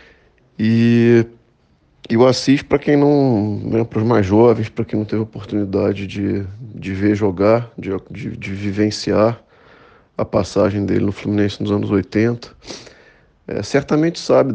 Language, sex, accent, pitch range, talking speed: Portuguese, male, Brazilian, 100-115 Hz, 155 wpm